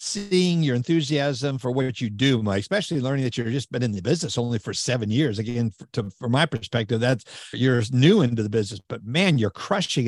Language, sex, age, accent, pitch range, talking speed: English, male, 50-69, American, 135-190 Hz, 215 wpm